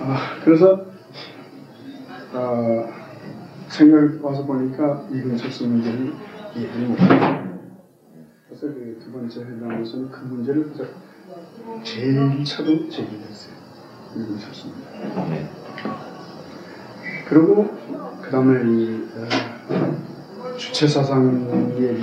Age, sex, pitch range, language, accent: 40-59, male, 115-160 Hz, Korean, native